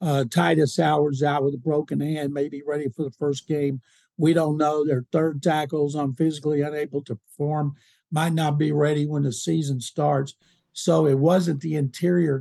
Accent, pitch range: American, 145-175 Hz